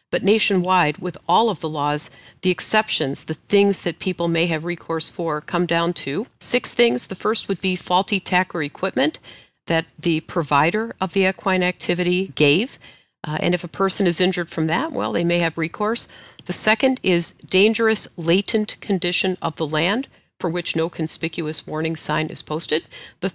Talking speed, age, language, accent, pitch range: 180 wpm, 50-69, English, American, 165-195 Hz